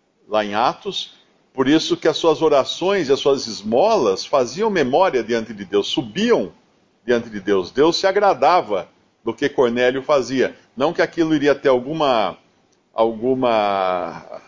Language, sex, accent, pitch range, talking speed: Portuguese, male, Brazilian, 115-160 Hz, 150 wpm